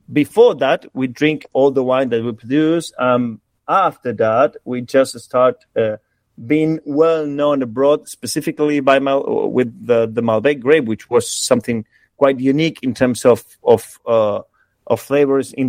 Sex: male